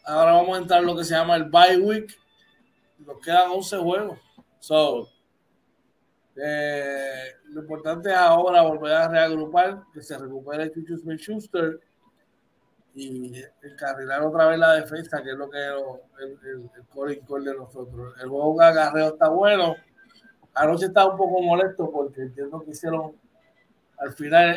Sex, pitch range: male, 150-195 Hz